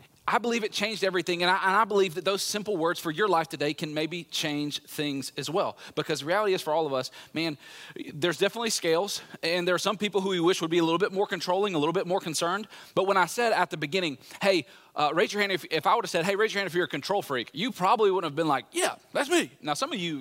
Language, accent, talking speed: English, American, 280 wpm